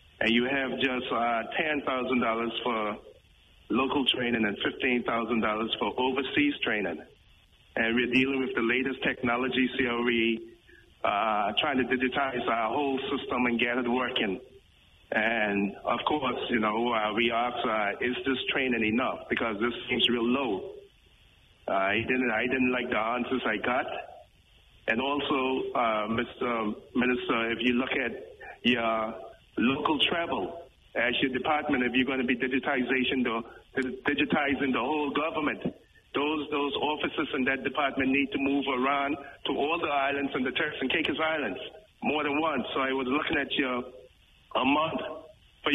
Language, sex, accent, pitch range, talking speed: English, male, American, 120-135 Hz, 160 wpm